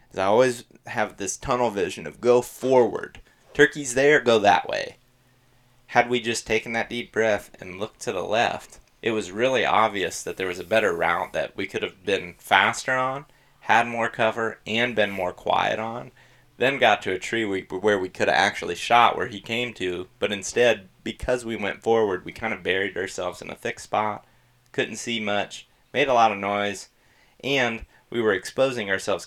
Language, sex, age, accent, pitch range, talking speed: English, male, 30-49, American, 95-125 Hz, 195 wpm